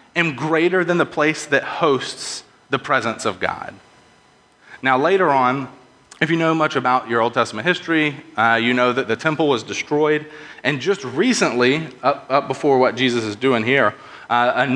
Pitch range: 115-150 Hz